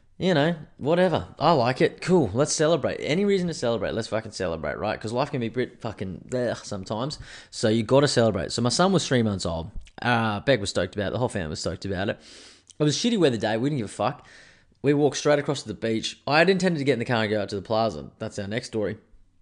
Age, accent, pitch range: 20-39, Australian, 105-130 Hz